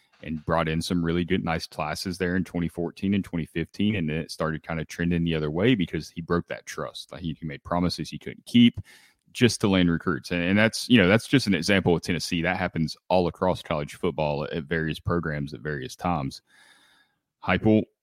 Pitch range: 80-95 Hz